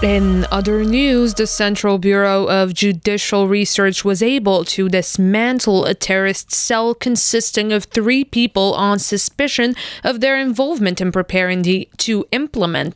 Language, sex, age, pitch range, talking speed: French, female, 20-39, 185-215 Hz, 135 wpm